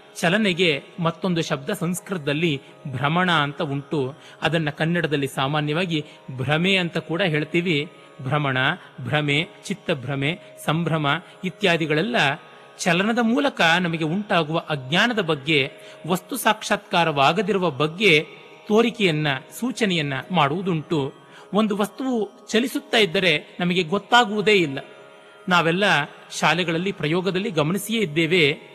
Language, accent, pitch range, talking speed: Kannada, native, 150-200 Hz, 90 wpm